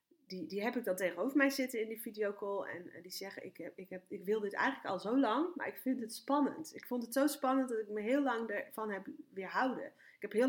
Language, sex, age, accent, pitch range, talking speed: Dutch, female, 30-49, Dutch, 200-275 Hz, 265 wpm